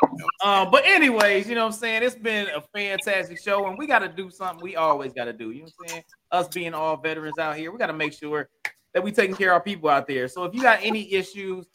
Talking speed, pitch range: 280 wpm, 135-180 Hz